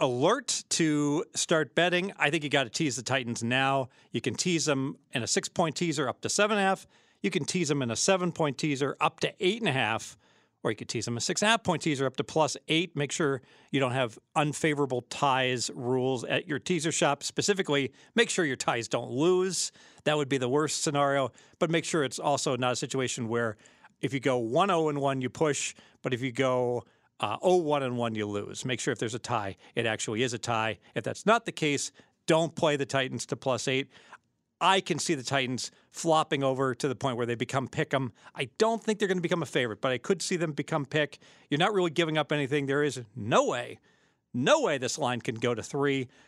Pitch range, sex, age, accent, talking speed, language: 130-165 Hz, male, 40-59, American, 235 wpm, English